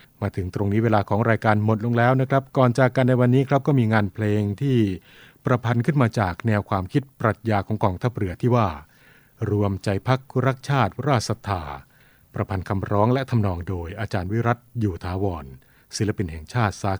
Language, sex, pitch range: Thai, male, 100-125 Hz